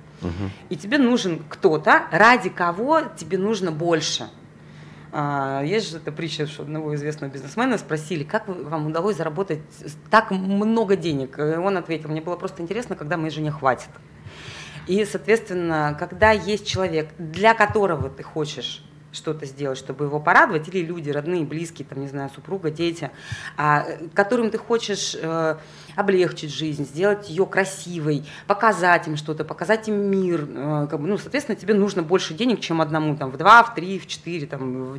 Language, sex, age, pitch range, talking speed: Russian, female, 20-39, 150-195 Hz, 155 wpm